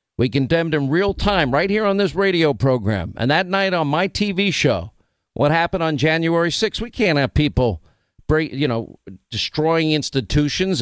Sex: male